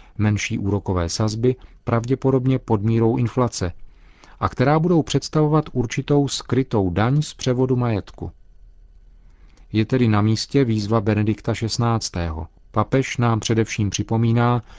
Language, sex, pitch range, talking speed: Czech, male, 100-120 Hz, 115 wpm